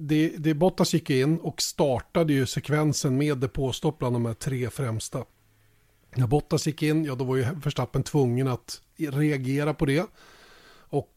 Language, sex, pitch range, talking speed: Swedish, male, 130-155 Hz, 165 wpm